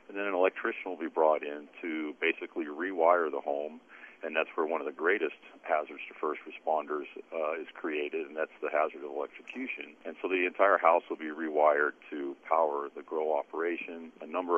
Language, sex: English, male